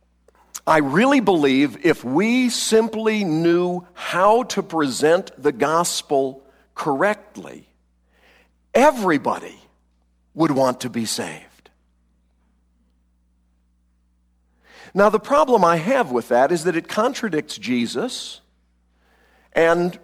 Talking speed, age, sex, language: 95 wpm, 50-69, male, English